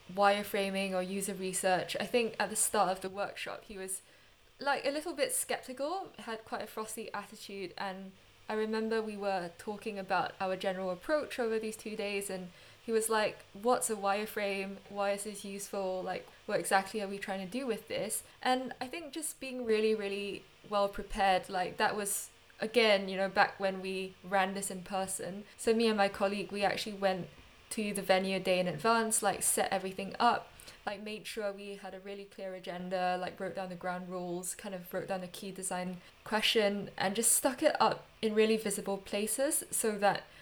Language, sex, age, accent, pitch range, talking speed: English, female, 10-29, British, 190-220 Hz, 200 wpm